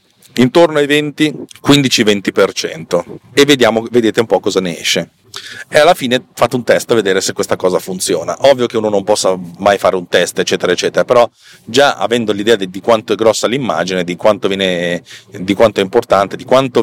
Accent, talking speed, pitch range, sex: native, 190 wpm, 95-125 Hz, male